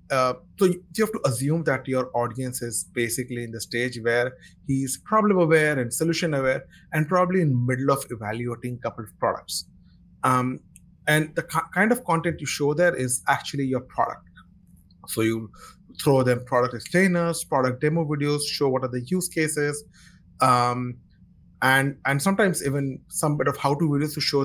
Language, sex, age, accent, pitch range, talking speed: English, male, 30-49, Indian, 125-160 Hz, 180 wpm